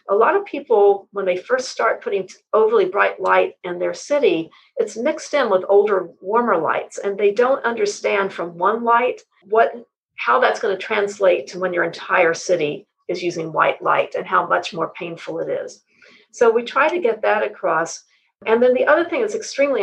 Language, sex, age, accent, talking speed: English, female, 50-69, American, 195 wpm